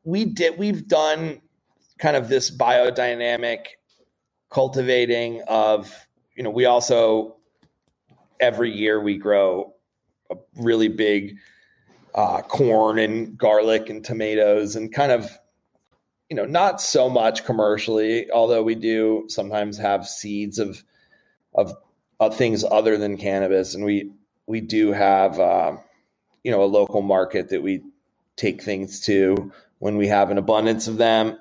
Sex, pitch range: male, 105-120 Hz